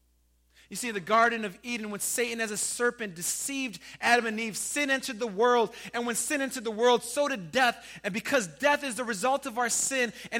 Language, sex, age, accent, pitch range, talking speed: English, male, 30-49, American, 190-260 Hz, 220 wpm